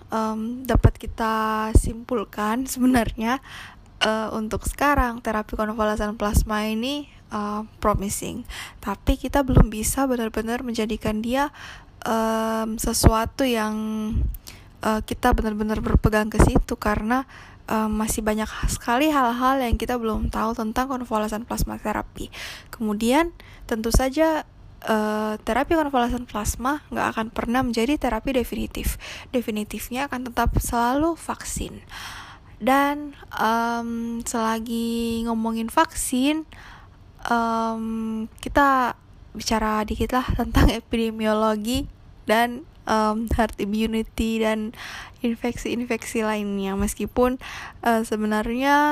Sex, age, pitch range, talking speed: female, 10-29, 215-245 Hz, 105 wpm